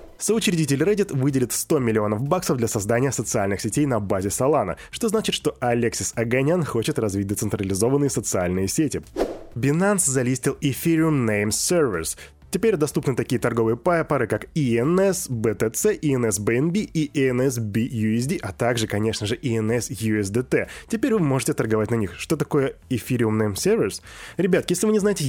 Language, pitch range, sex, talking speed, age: Russian, 110-155 Hz, male, 150 wpm, 20-39